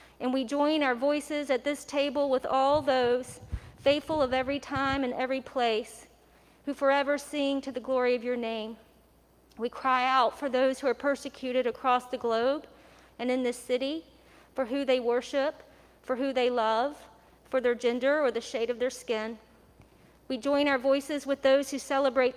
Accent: American